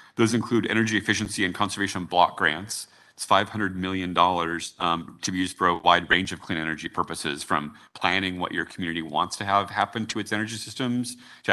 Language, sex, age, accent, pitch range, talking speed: English, male, 30-49, American, 85-105 Hz, 195 wpm